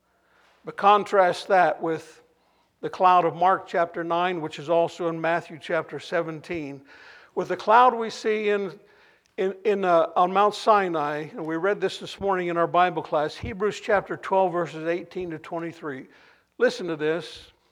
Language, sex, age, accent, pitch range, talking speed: English, male, 60-79, American, 160-205 Hz, 165 wpm